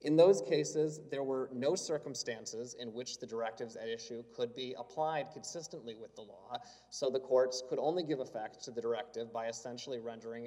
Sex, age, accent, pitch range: male, 30-49, American, 115-140 Hz